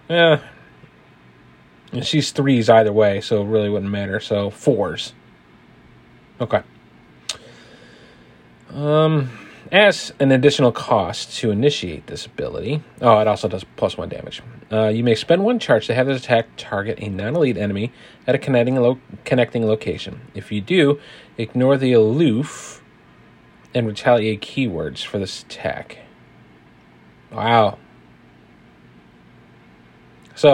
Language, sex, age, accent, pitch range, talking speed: English, male, 30-49, American, 105-140 Hz, 125 wpm